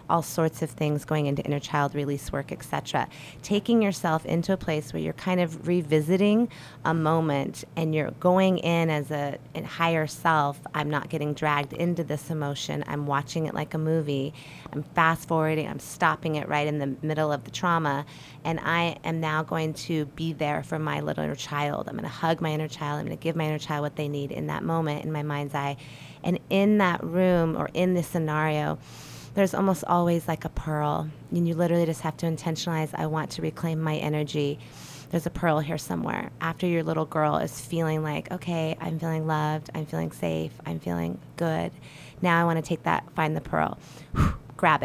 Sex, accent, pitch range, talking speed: female, American, 145-170 Hz, 205 wpm